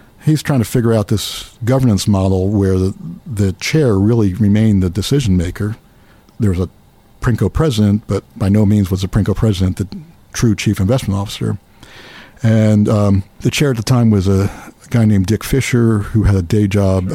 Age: 50-69